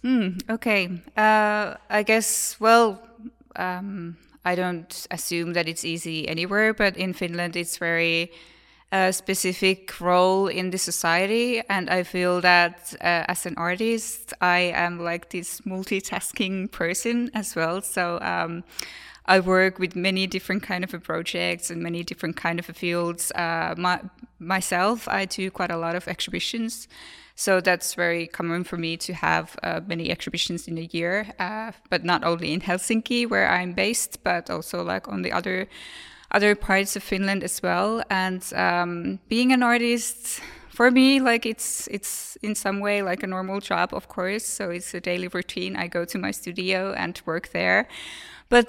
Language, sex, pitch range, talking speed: English, female, 175-210 Hz, 170 wpm